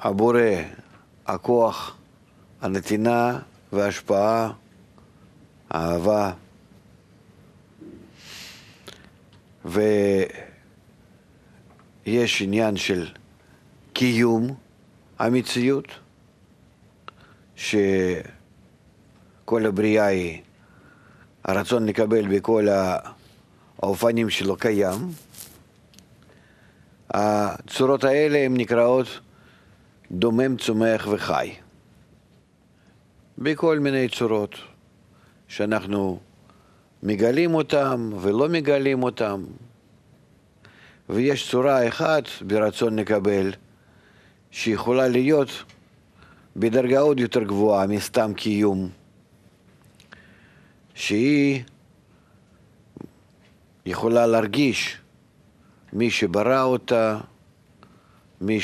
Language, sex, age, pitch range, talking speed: Hebrew, male, 50-69, 100-125 Hz, 55 wpm